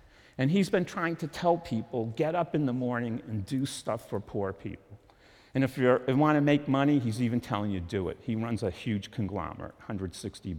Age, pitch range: 50-69, 100-130 Hz